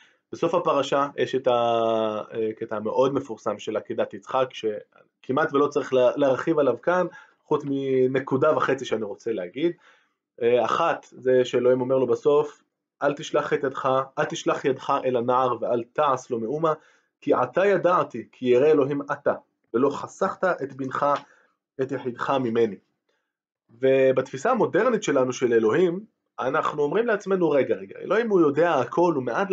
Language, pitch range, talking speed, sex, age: Hebrew, 125-170 Hz, 145 wpm, male, 20-39